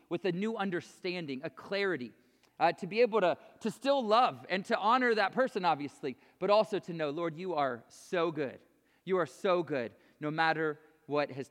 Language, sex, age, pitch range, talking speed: English, male, 30-49, 160-215 Hz, 195 wpm